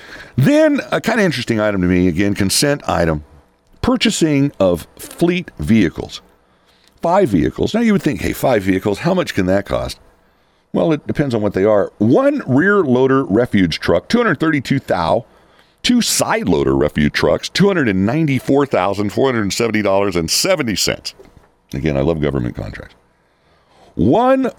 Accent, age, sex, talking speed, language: American, 50-69, male, 130 wpm, English